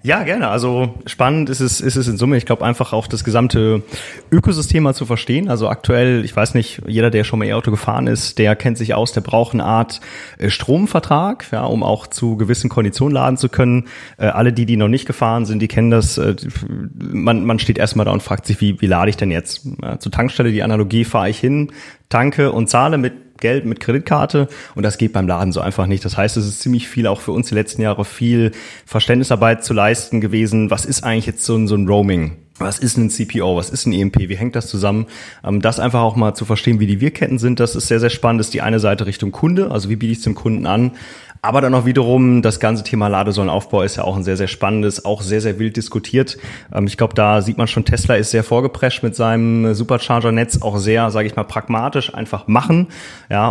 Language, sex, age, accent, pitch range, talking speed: German, male, 30-49, German, 105-125 Hz, 230 wpm